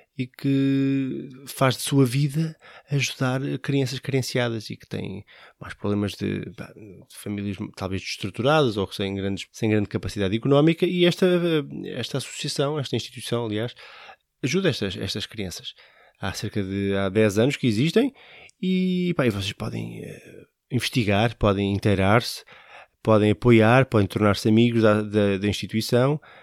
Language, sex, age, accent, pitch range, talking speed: Portuguese, male, 20-39, Brazilian, 105-130 Hz, 140 wpm